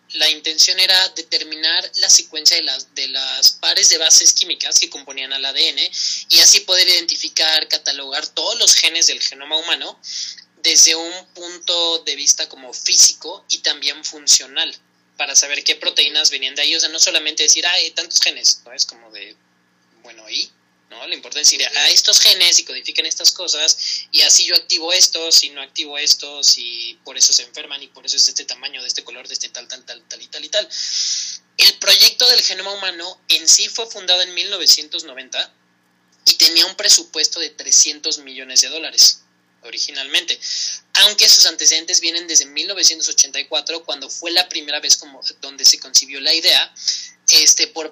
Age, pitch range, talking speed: 20-39, 145-175 Hz, 180 wpm